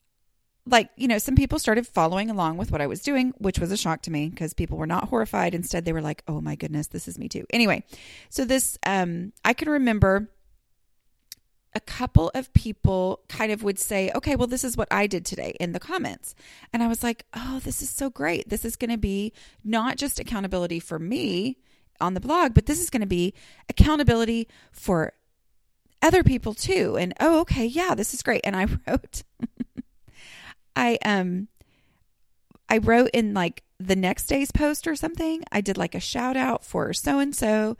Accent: American